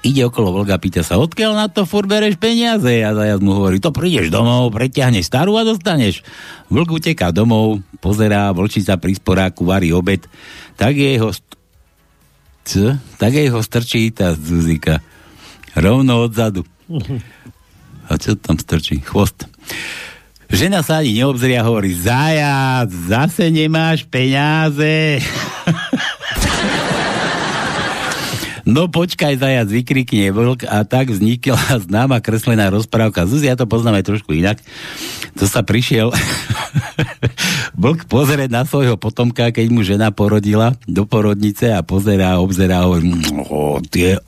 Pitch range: 100-145 Hz